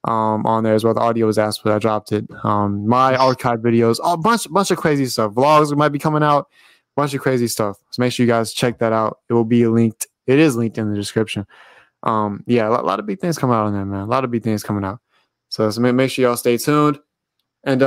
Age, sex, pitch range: 20-39, male, 115-150 Hz